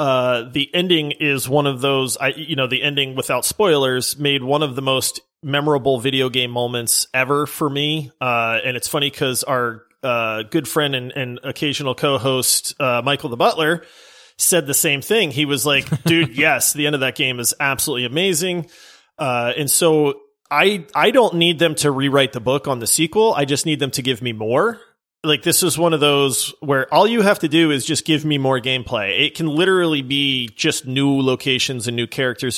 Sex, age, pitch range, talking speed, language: male, 30-49, 130-170 Hz, 200 wpm, English